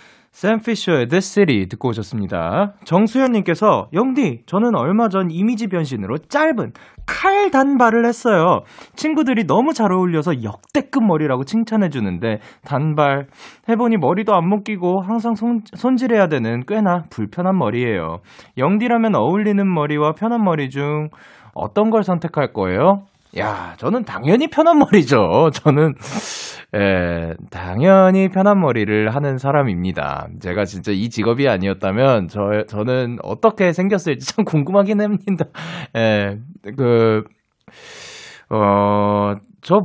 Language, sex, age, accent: Korean, male, 20-39, native